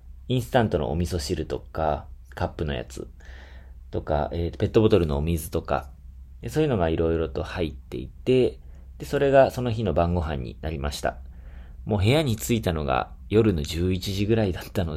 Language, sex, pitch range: Japanese, male, 70-105 Hz